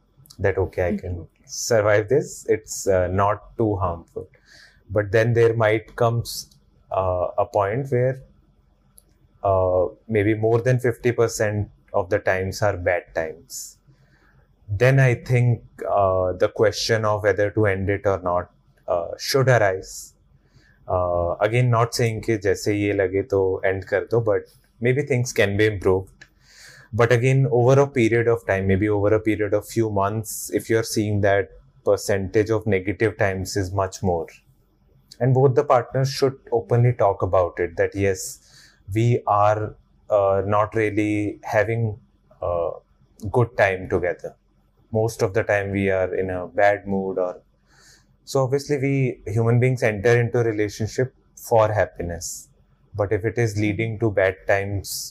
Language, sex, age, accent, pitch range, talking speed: English, male, 30-49, Indian, 95-120 Hz, 150 wpm